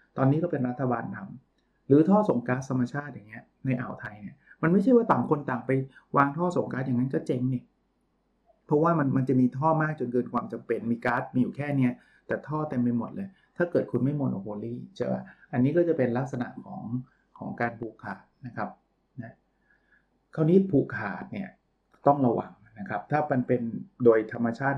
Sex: male